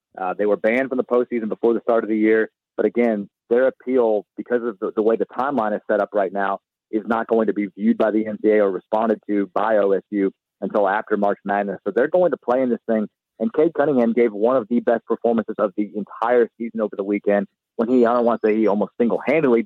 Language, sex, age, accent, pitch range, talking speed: English, male, 40-59, American, 110-125 Hz, 245 wpm